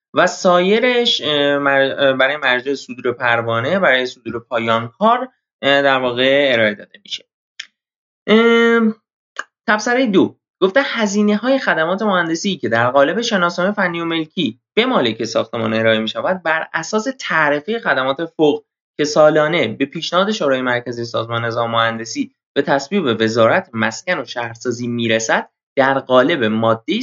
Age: 20-39